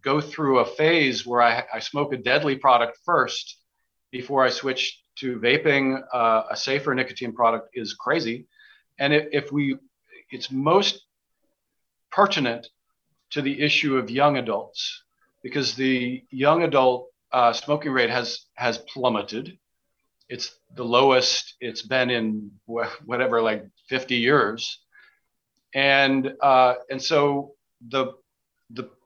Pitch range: 125-150 Hz